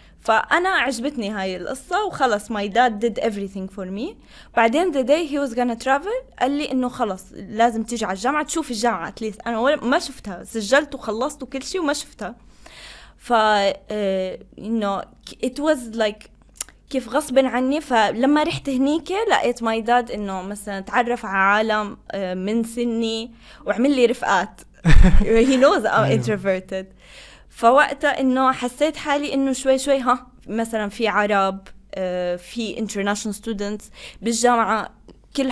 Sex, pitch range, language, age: female, 210-270 Hz, Arabic, 10-29